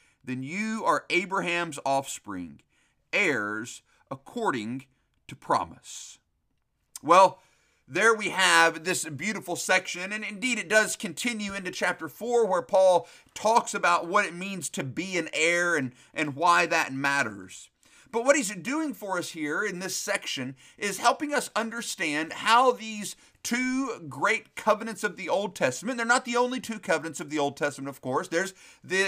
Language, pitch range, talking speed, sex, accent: English, 155-220 Hz, 160 wpm, male, American